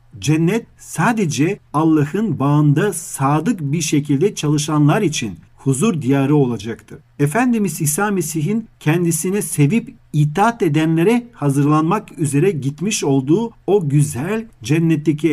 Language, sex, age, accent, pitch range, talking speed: Turkish, male, 50-69, native, 140-175 Hz, 100 wpm